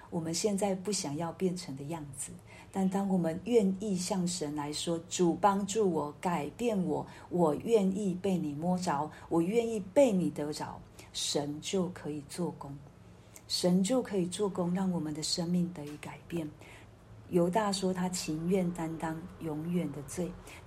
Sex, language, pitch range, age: female, Chinese, 160-195 Hz, 40-59